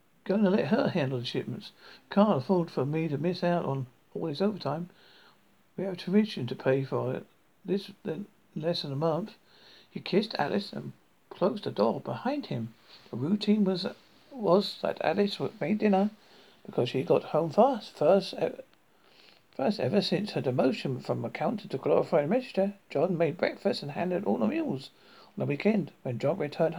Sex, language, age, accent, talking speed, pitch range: male, English, 50-69, British, 185 wpm, 150-205 Hz